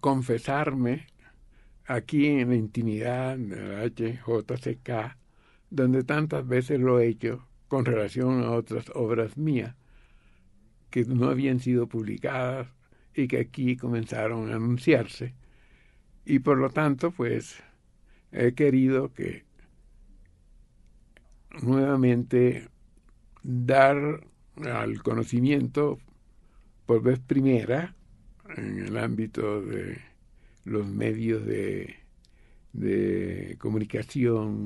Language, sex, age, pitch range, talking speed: Spanish, male, 60-79, 110-135 Hz, 95 wpm